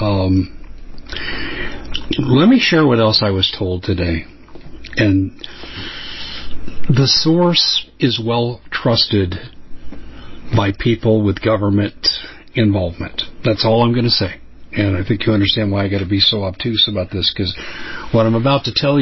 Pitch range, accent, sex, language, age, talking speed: 105-135 Hz, American, male, English, 50-69, 150 wpm